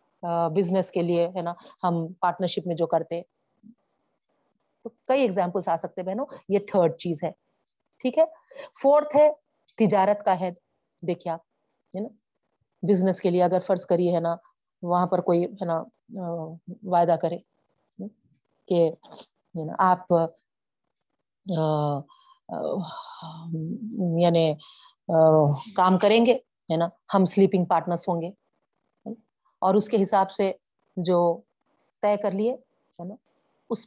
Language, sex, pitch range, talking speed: Urdu, female, 175-235 Hz, 115 wpm